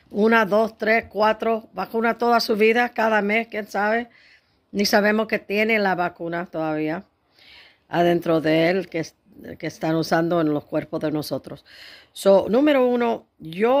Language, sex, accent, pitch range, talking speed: English, female, American, 175-215 Hz, 150 wpm